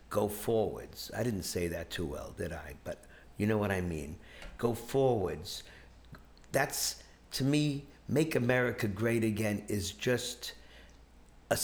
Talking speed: 145 wpm